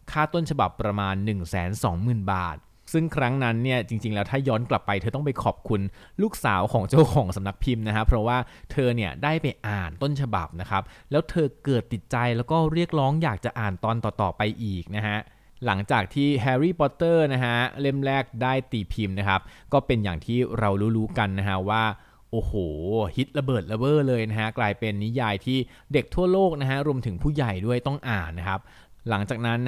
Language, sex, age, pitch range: Thai, male, 20-39, 100-130 Hz